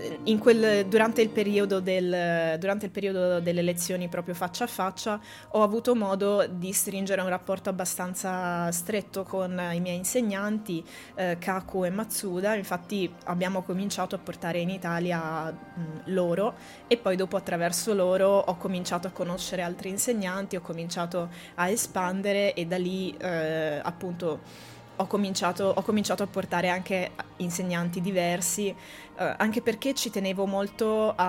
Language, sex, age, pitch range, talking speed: Italian, female, 20-39, 180-210 Hz, 140 wpm